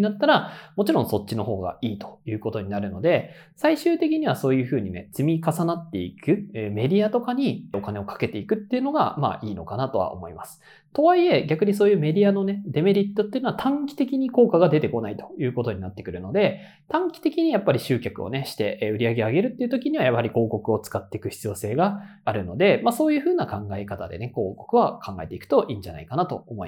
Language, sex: Japanese, male